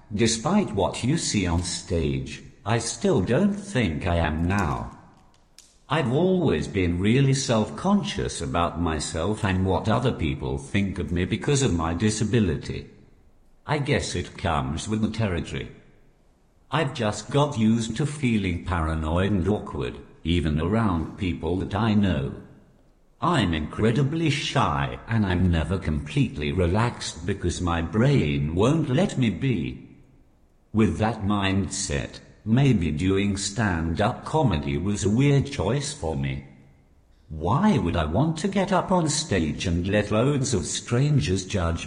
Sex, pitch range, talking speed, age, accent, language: male, 85-120 Hz, 140 wpm, 60-79, British, English